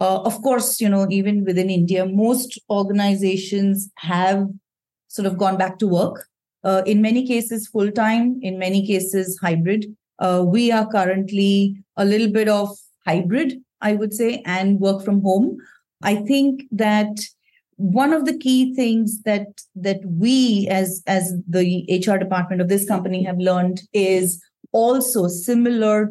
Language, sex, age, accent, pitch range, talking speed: English, female, 30-49, Indian, 185-215 Hz, 155 wpm